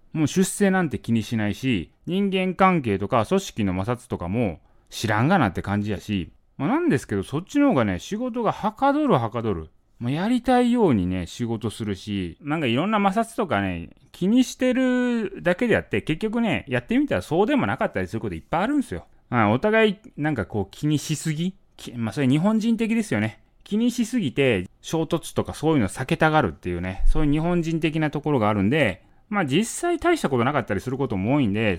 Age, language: 30-49, Japanese